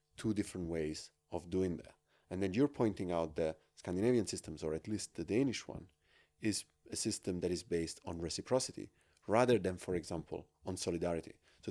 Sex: male